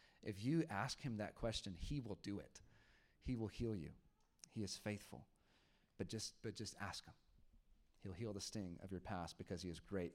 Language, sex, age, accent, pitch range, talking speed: English, male, 30-49, American, 100-145 Hz, 200 wpm